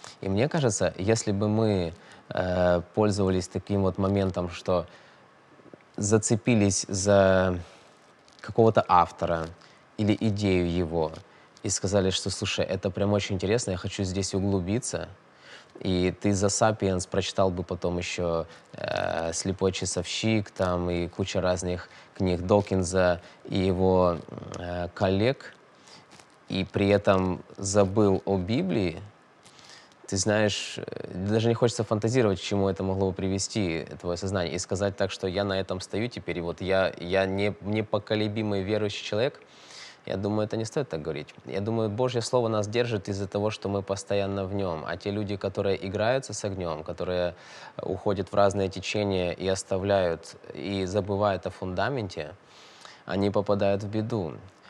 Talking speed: 140 wpm